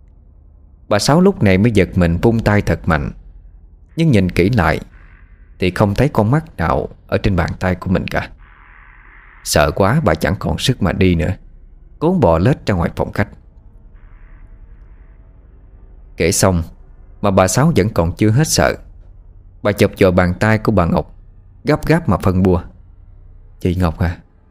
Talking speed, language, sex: 170 wpm, Vietnamese, male